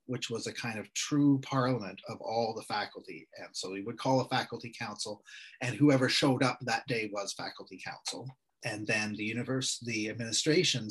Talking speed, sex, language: 185 wpm, male, English